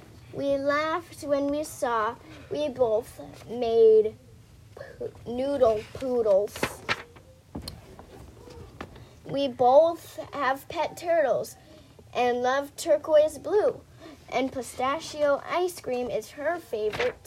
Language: English